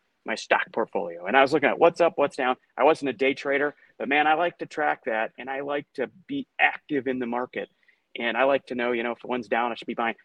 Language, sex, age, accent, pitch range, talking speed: English, male, 40-59, American, 130-180 Hz, 275 wpm